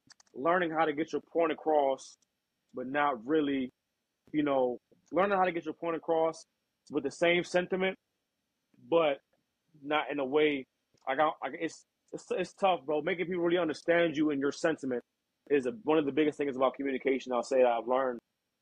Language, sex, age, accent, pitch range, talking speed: English, male, 20-39, American, 130-160 Hz, 185 wpm